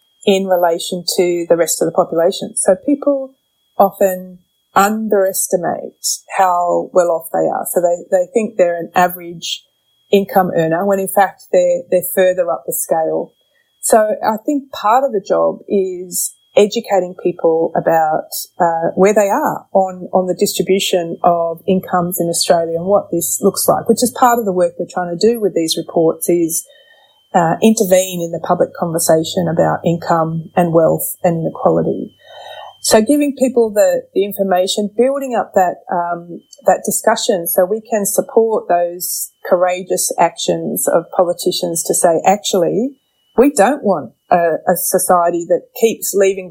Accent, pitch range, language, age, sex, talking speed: Australian, 175-210 Hz, English, 30-49, female, 155 wpm